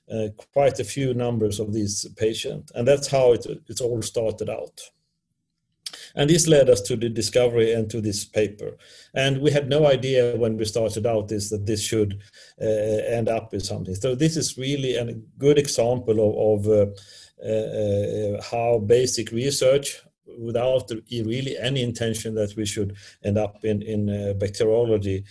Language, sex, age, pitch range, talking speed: English, male, 40-59, 105-130 Hz, 175 wpm